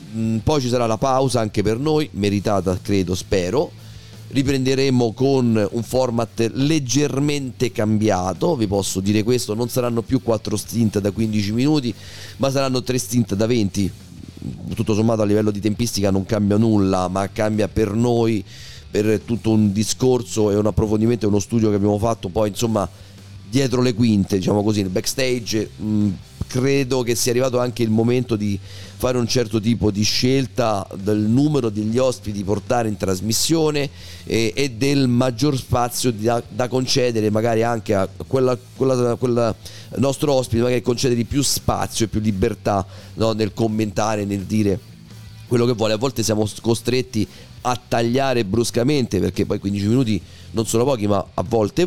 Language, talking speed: Italian, 160 wpm